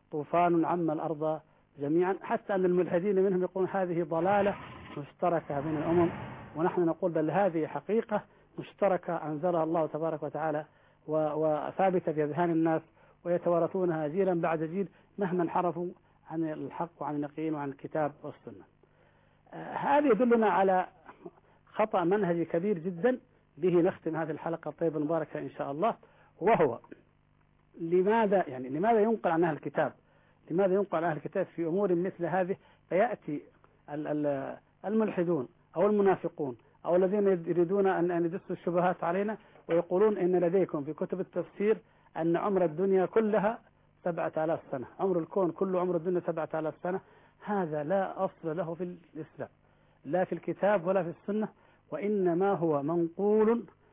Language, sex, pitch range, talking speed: Arabic, male, 155-190 Hz, 130 wpm